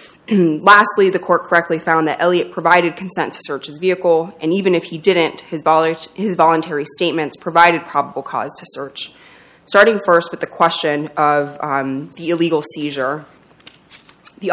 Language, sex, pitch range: English, female, 155-185 Hz